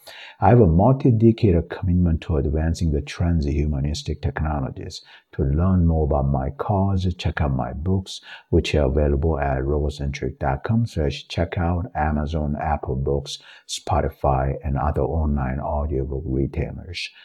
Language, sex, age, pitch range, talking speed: English, male, 60-79, 70-90 Hz, 130 wpm